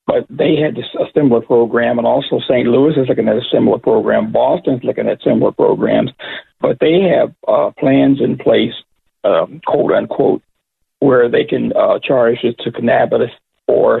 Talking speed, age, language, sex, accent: 175 wpm, 50-69, English, male, American